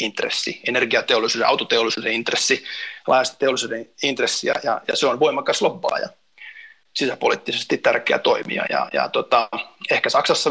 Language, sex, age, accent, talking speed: Finnish, male, 30-49, native, 120 wpm